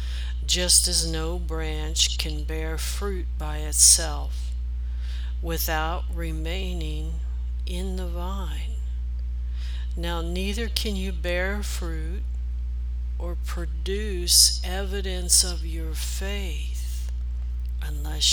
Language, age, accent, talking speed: English, 60-79, American, 90 wpm